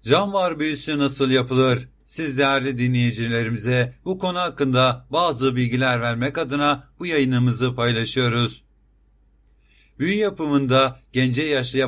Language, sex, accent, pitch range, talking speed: Turkish, male, native, 125-140 Hz, 110 wpm